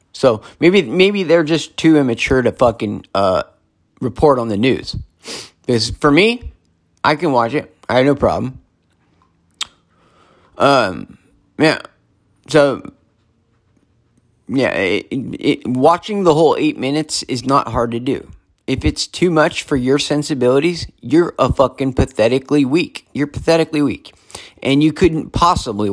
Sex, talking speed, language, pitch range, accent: male, 140 wpm, English, 115-150 Hz, American